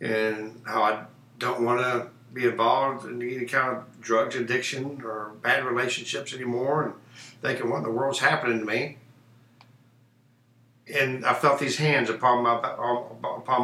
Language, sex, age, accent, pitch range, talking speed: English, male, 60-79, American, 120-125 Hz, 155 wpm